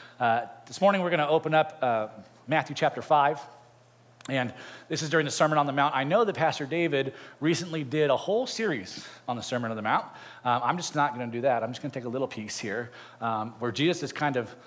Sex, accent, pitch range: male, American, 125-170 Hz